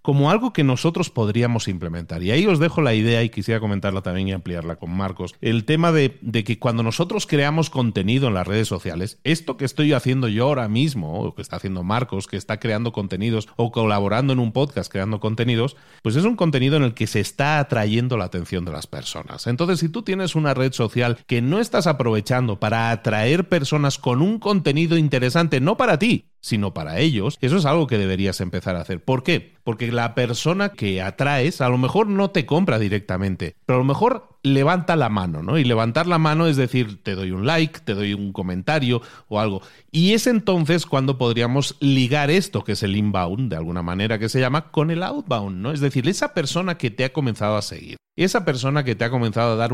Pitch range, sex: 110-155 Hz, male